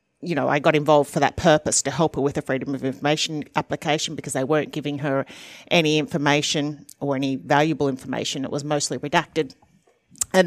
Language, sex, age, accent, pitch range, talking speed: English, female, 30-49, Australian, 145-165 Hz, 190 wpm